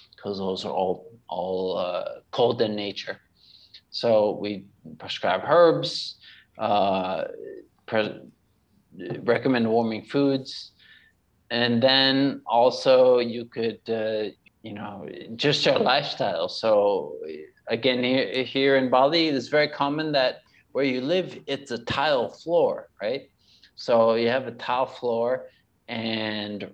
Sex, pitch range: male, 110-135 Hz